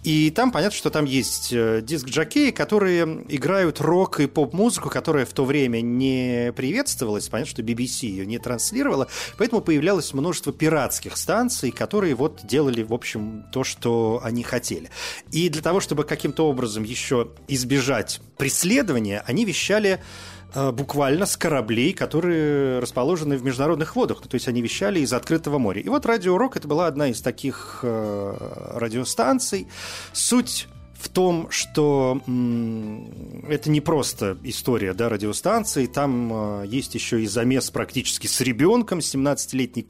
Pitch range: 115-160 Hz